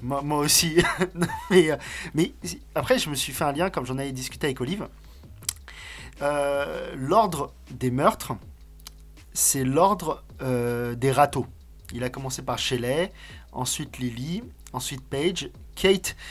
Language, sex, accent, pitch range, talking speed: French, male, French, 120-160 Hz, 135 wpm